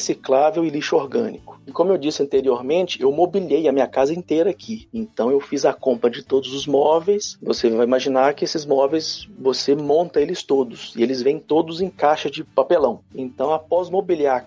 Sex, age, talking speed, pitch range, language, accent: male, 40-59, 195 wpm, 140-185 Hz, Portuguese, Brazilian